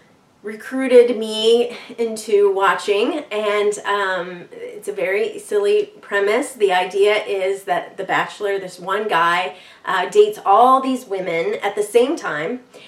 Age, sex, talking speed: 30-49, female, 135 wpm